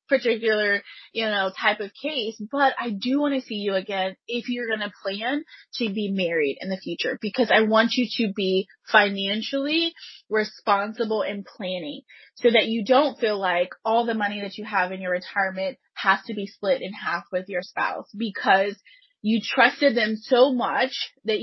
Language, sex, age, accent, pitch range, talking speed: English, female, 20-39, American, 195-240 Hz, 185 wpm